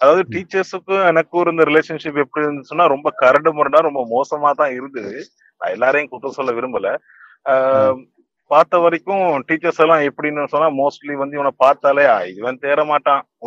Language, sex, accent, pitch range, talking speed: Tamil, male, native, 130-155 Hz, 135 wpm